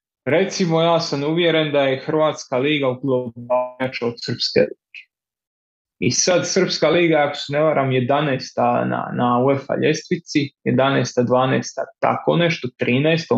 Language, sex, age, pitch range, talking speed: Croatian, male, 20-39, 130-180 Hz, 135 wpm